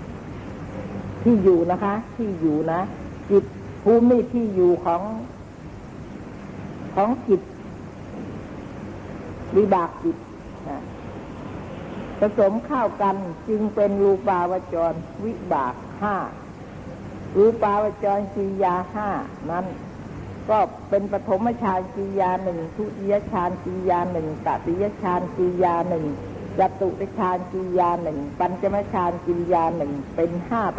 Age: 60-79